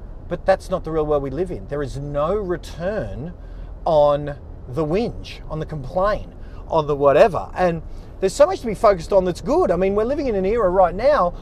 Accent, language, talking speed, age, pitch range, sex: Australian, English, 215 wpm, 40-59, 155-200 Hz, male